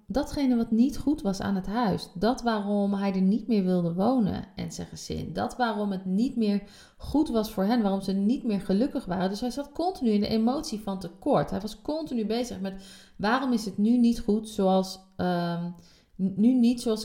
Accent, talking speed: Dutch, 195 wpm